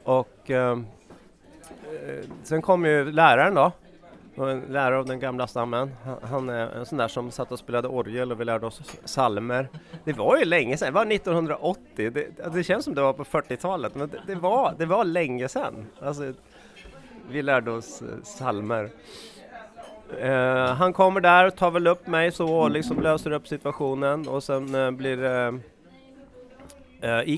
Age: 30-49